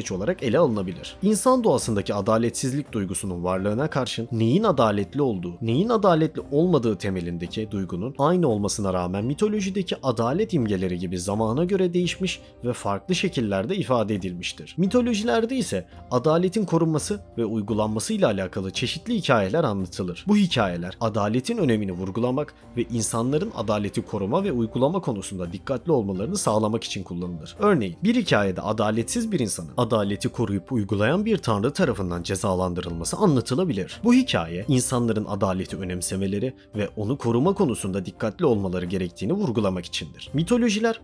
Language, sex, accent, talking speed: Turkish, male, native, 130 wpm